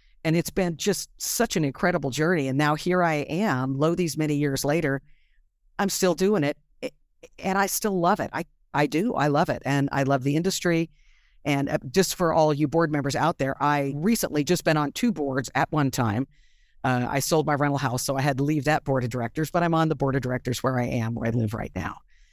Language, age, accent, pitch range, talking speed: English, 50-69, American, 135-165 Hz, 235 wpm